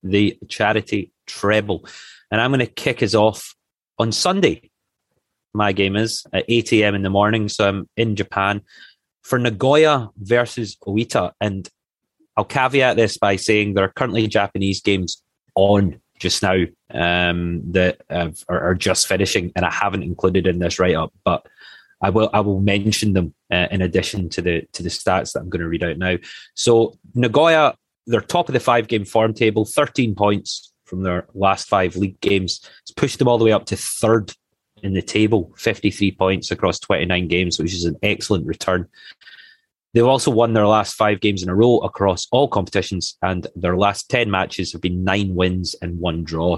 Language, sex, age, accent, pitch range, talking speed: English, male, 30-49, British, 90-110 Hz, 180 wpm